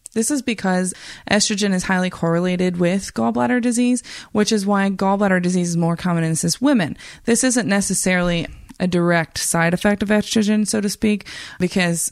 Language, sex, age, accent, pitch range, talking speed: English, female, 20-39, American, 170-205 Hz, 170 wpm